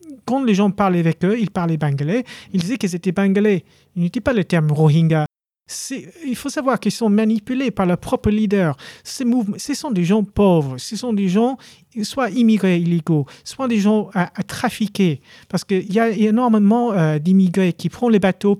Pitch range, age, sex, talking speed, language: 165-215 Hz, 40-59, male, 205 wpm, French